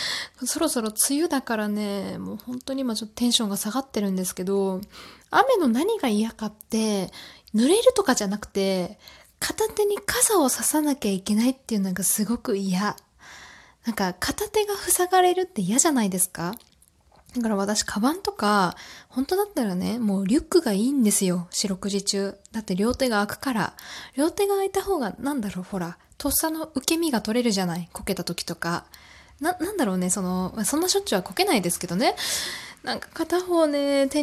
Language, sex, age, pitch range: Japanese, female, 20-39, 195-300 Hz